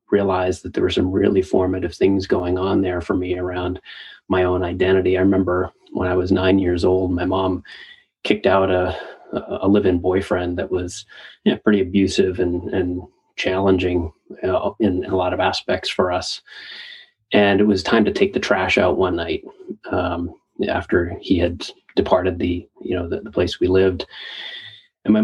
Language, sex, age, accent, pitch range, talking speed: English, male, 30-49, American, 90-95 Hz, 185 wpm